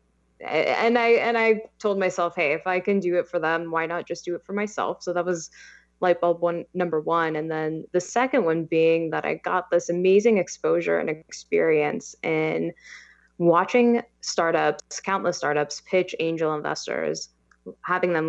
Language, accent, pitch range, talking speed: English, American, 160-195 Hz, 175 wpm